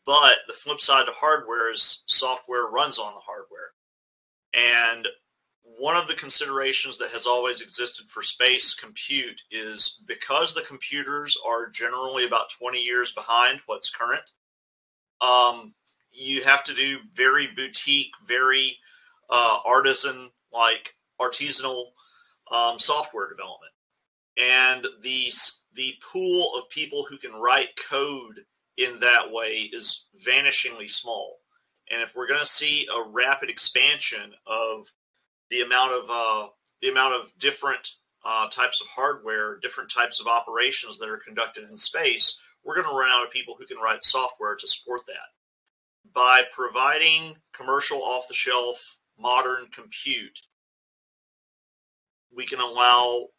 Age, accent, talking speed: 30-49, American, 135 wpm